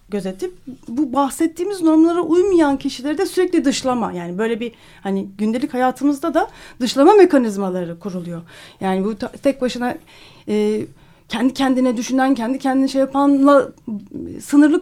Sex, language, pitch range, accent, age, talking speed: female, Turkish, 200-300 Hz, native, 40-59, 130 wpm